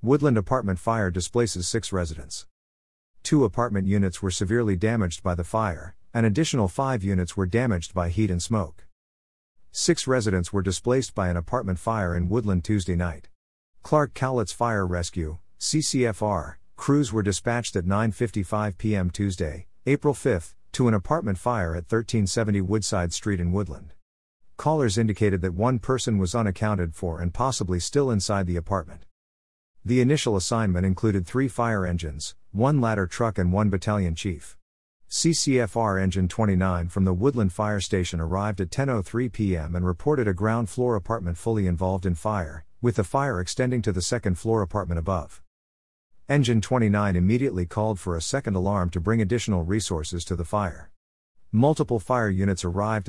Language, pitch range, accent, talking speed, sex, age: English, 90-115 Hz, American, 160 wpm, male, 50-69